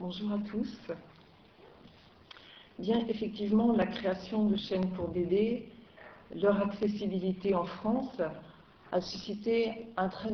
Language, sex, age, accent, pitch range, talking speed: French, female, 50-69, French, 180-215 Hz, 110 wpm